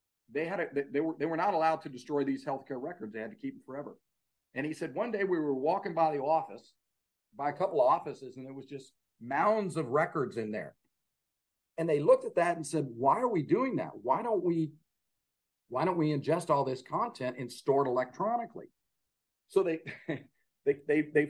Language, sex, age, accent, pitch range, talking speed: English, male, 40-59, American, 130-170 Hz, 215 wpm